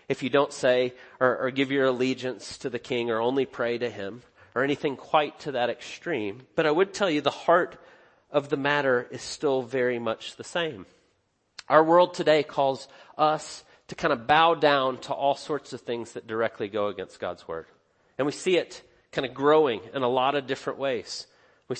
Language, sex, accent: English, male, American